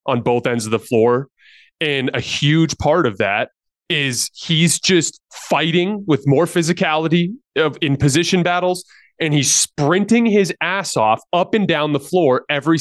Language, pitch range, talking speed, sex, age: English, 125-190 Hz, 160 wpm, male, 20-39